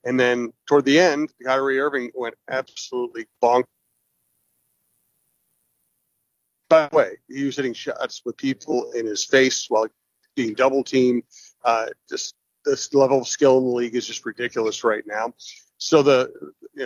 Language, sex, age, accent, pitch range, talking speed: English, male, 40-59, American, 120-135 Hz, 155 wpm